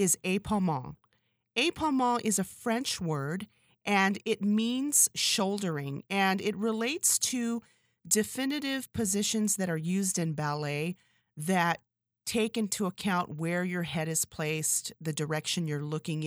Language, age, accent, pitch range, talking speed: English, 40-59, American, 155-215 Hz, 130 wpm